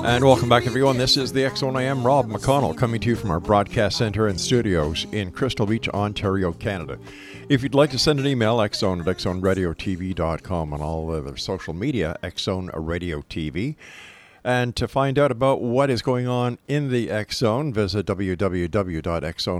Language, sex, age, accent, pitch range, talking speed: English, male, 50-69, American, 90-120 Hz, 185 wpm